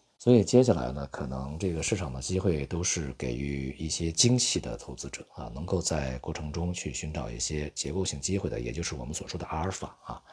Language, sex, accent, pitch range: Chinese, male, native, 65-95 Hz